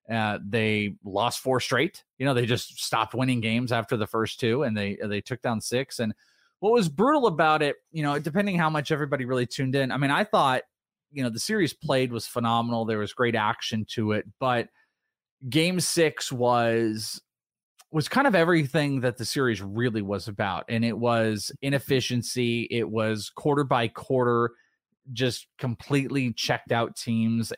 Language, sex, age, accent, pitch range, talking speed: English, male, 30-49, American, 115-155 Hz, 180 wpm